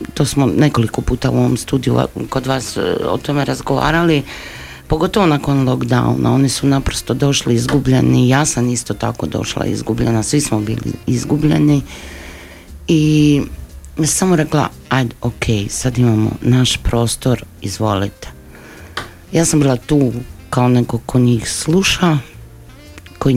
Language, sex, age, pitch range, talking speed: Croatian, female, 50-69, 110-135 Hz, 130 wpm